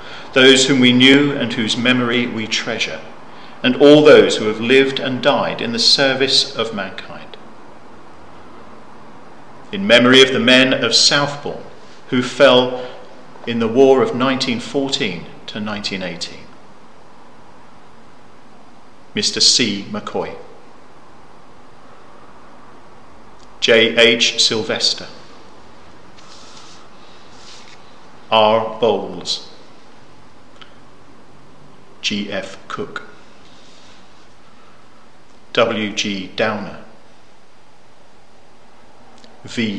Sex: male